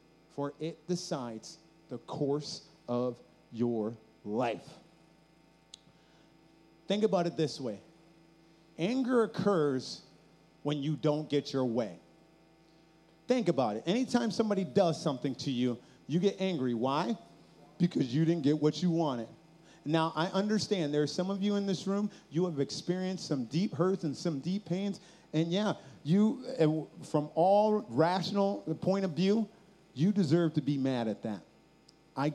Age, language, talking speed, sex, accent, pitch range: 30-49, English, 145 wpm, male, American, 140-185 Hz